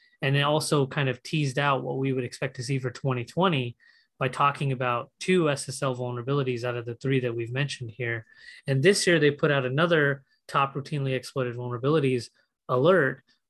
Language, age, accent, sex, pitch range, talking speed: English, 20-39, American, male, 130-155 Hz, 180 wpm